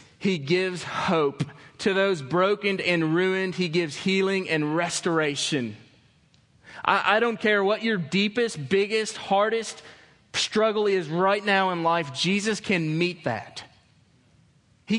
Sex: male